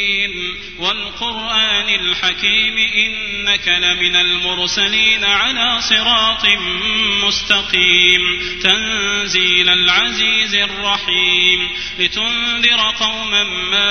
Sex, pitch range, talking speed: male, 180-220 Hz, 60 wpm